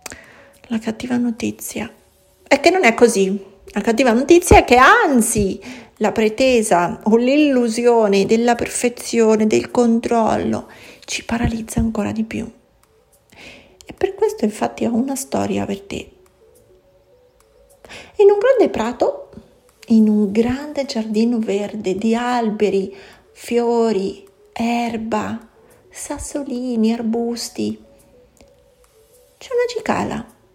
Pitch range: 220-345 Hz